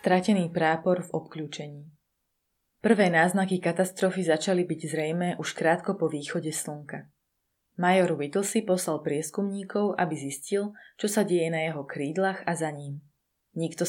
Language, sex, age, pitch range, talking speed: Slovak, female, 20-39, 155-190 Hz, 135 wpm